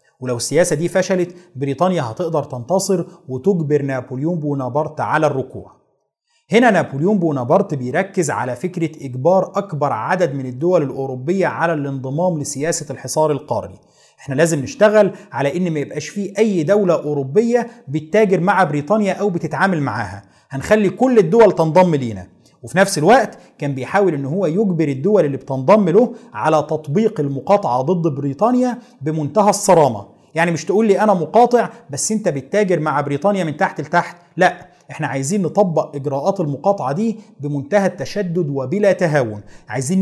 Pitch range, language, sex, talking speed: 140-200 Hz, Arabic, male, 145 wpm